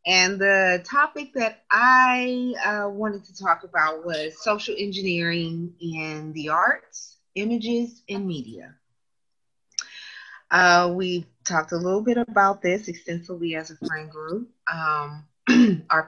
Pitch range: 165-215 Hz